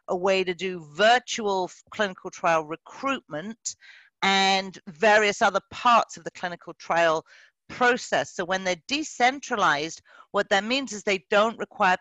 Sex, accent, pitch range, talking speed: female, British, 165-210 Hz, 140 wpm